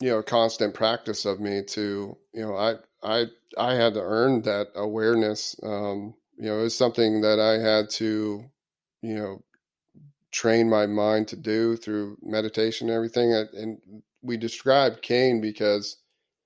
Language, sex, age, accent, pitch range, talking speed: English, male, 30-49, American, 105-120 Hz, 155 wpm